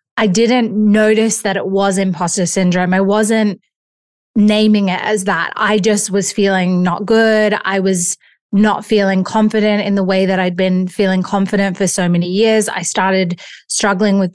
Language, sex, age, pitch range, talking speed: English, female, 20-39, 185-210 Hz, 170 wpm